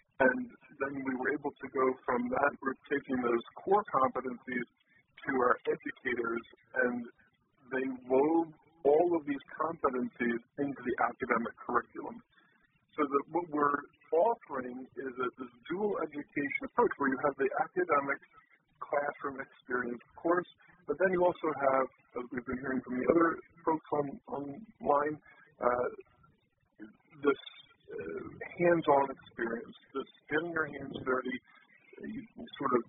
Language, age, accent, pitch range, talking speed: English, 50-69, American, 130-175 Hz, 140 wpm